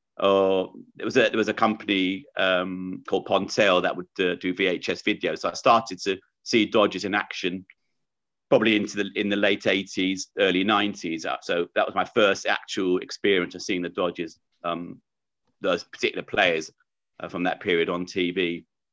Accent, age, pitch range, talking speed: British, 40-59, 90-110 Hz, 180 wpm